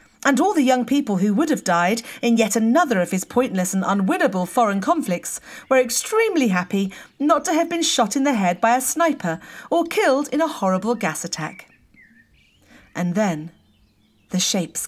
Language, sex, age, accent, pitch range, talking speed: English, female, 40-59, British, 190-280 Hz, 180 wpm